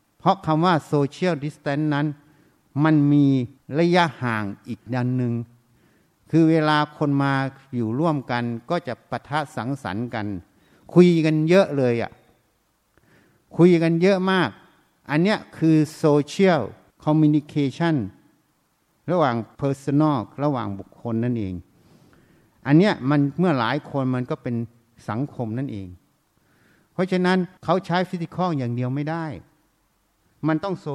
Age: 60-79